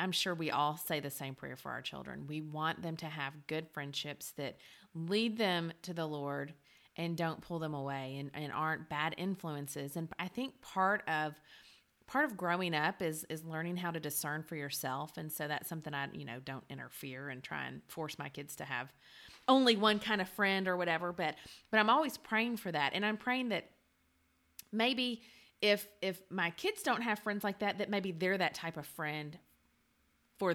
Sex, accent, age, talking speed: female, American, 30-49, 205 wpm